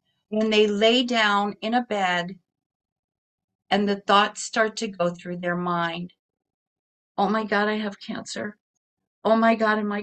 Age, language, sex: 50-69, English, female